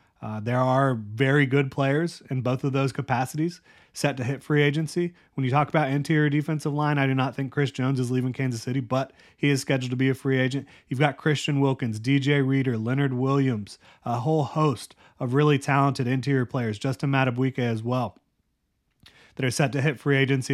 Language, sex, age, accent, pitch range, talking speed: English, male, 30-49, American, 125-140 Hz, 200 wpm